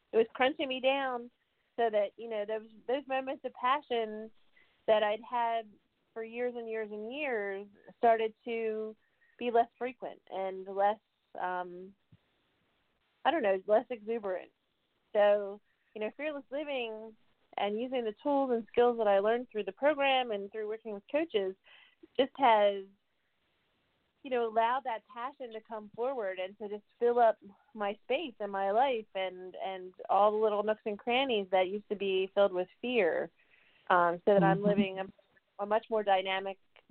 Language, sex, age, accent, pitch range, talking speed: English, female, 30-49, American, 200-245 Hz, 165 wpm